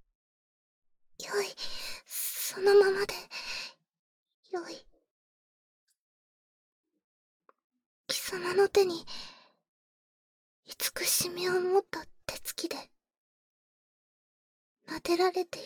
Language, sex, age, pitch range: Japanese, female, 20-39, 330-485 Hz